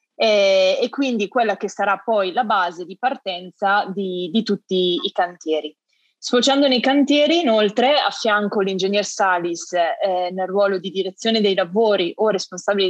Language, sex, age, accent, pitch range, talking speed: Italian, female, 20-39, native, 185-245 Hz, 150 wpm